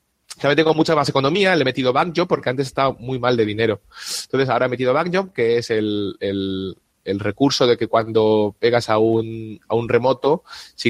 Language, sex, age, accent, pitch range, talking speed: Spanish, male, 30-49, Spanish, 110-140 Hz, 215 wpm